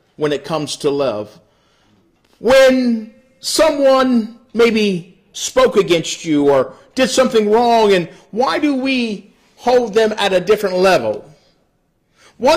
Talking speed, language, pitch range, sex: 125 wpm, English, 165-230 Hz, male